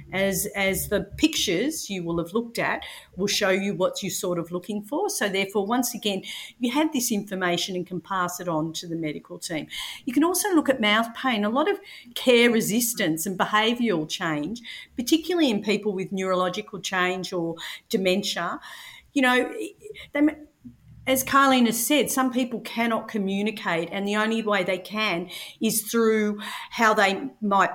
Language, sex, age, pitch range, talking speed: English, female, 50-69, 180-250 Hz, 175 wpm